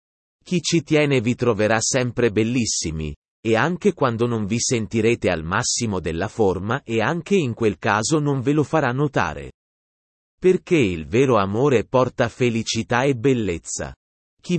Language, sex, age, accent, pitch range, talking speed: Italian, male, 30-49, native, 105-145 Hz, 150 wpm